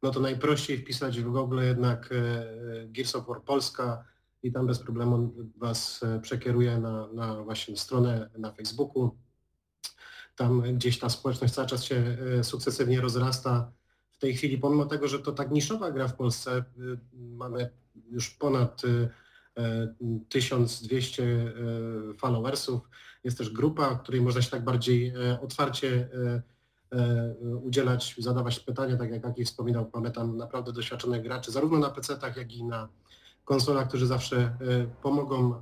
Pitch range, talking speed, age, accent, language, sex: 120-130 Hz, 135 wpm, 30-49, native, Polish, male